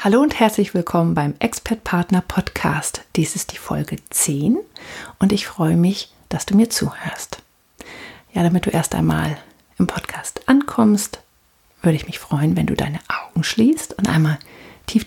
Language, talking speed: German, 155 wpm